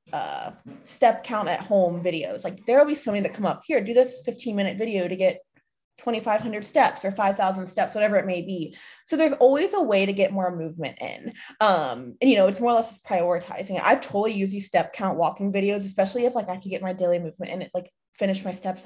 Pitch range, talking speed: 180-240 Hz, 235 wpm